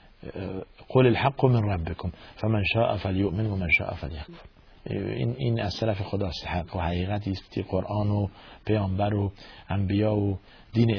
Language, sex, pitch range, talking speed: Persian, male, 95-110 Hz, 120 wpm